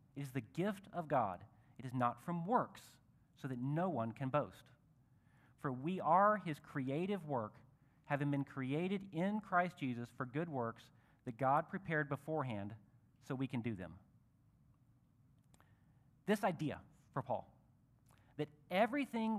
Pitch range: 125-185 Hz